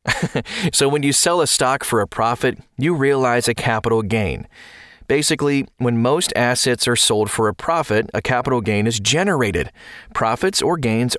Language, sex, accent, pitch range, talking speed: English, male, American, 120-160 Hz, 165 wpm